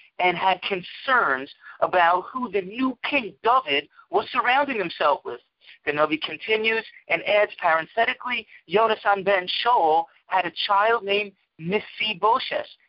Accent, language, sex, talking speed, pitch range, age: American, English, male, 120 wpm, 170-220 Hz, 50-69